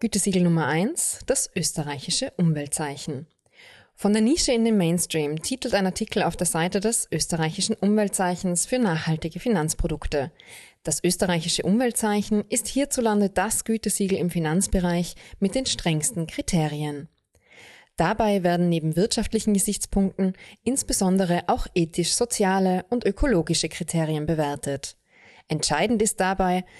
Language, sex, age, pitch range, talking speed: German, female, 20-39, 165-210 Hz, 115 wpm